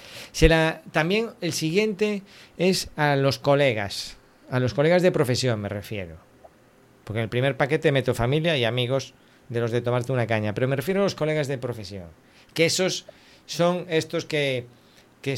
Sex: male